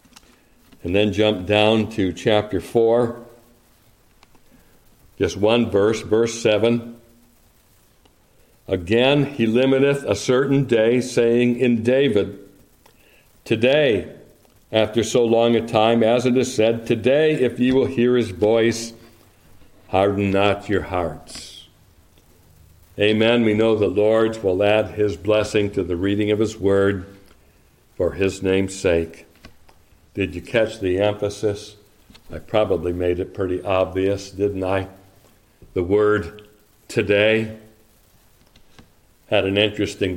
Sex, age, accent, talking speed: male, 60-79, American, 120 wpm